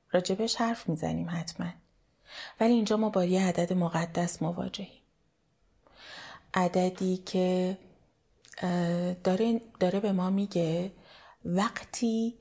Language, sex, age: Persian, female, 30-49